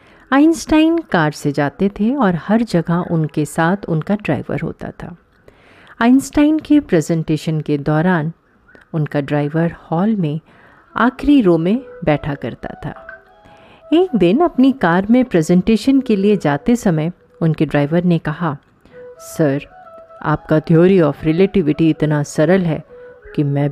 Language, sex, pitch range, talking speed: Hindi, female, 155-210 Hz, 135 wpm